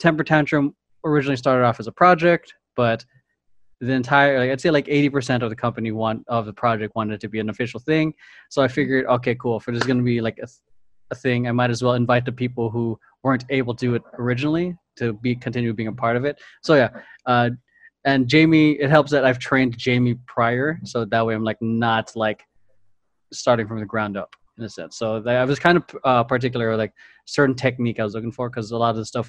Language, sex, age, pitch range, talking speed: English, male, 20-39, 115-140 Hz, 235 wpm